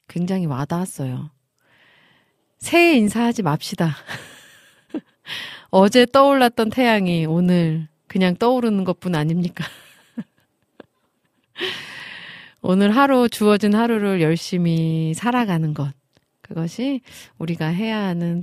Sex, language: female, Korean